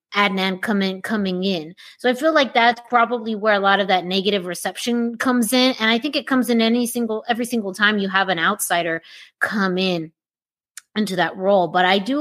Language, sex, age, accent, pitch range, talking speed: English, female, 30-49, American, 195-240 Hz, 205 wpm